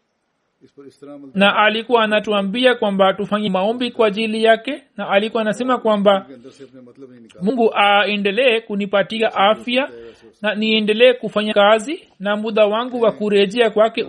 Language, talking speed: Swahili, 115 wpm